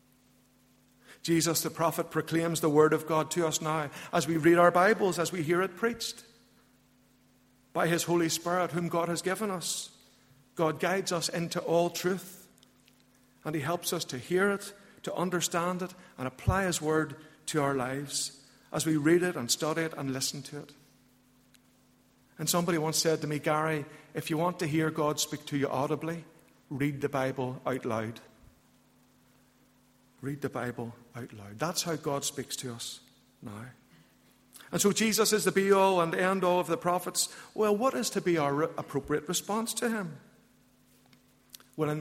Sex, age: male, 50-69